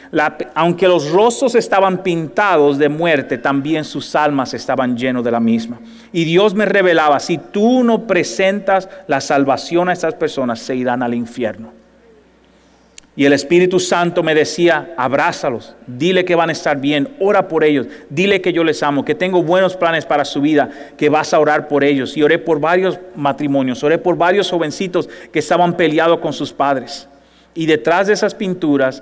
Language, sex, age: English, male, 40-59